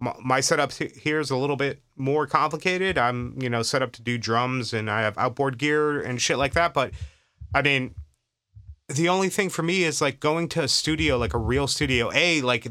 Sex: male